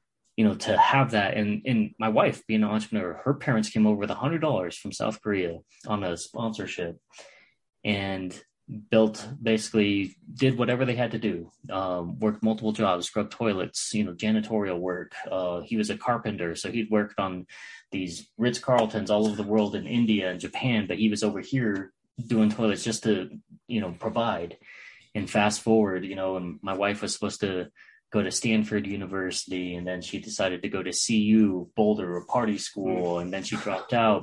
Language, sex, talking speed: English, male, 185 wpm